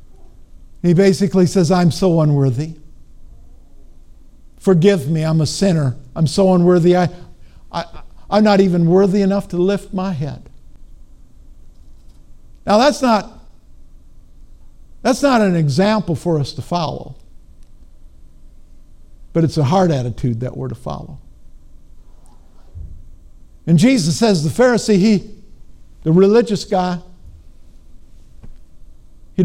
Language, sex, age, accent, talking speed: English, male, 50-69, American, 110 wpm